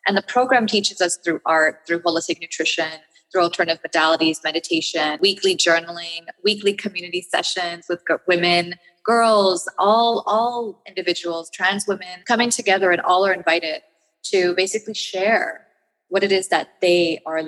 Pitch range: 165-210 Hz